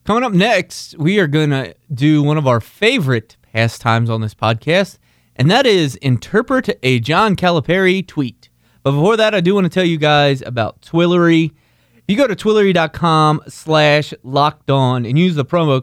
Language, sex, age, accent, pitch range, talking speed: English, male, 20-39, American, 120-175 Hz, 180 wpm